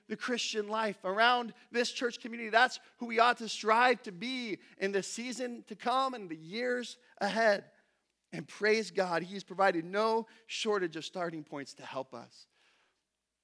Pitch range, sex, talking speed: 170-225 Hz, male, 165 wpm